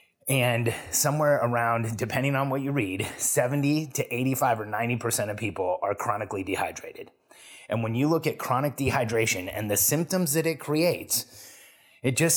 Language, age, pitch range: English, 30-49, 120-145 Hz